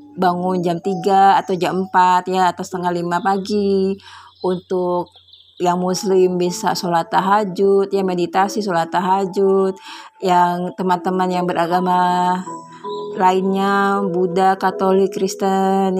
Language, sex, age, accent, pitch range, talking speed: Indonesian, female, 20-39, native, 180-215 Hz, 110 wpm